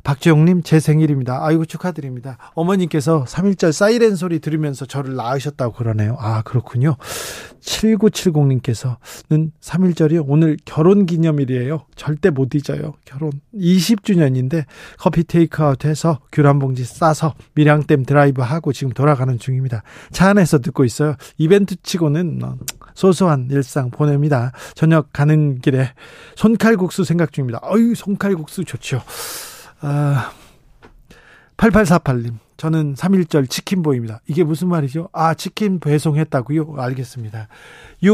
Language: Korean